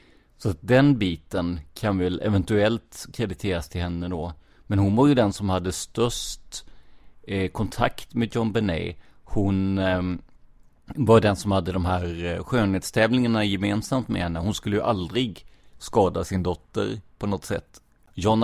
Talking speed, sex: 145 wpm, male